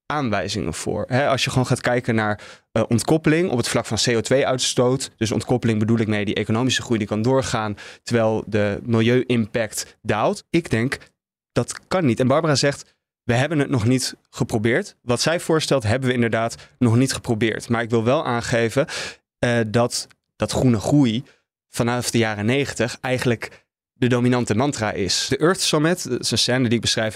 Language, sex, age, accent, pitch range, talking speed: Dutch, male, 20-39, Dutch, 110-135 Hz, 175 wpm